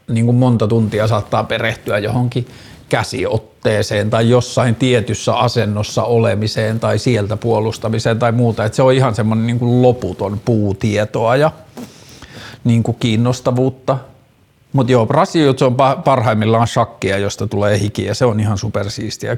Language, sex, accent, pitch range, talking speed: Finnish, male, native, 110-130 Hz, 125 wpm